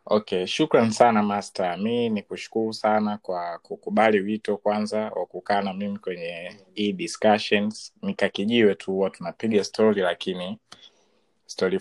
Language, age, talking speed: Swahili, 20-39, 120 wpm